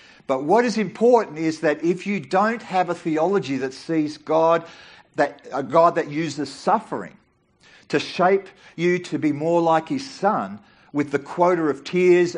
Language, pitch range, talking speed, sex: English, 135-180 Hz, 165 wpm, male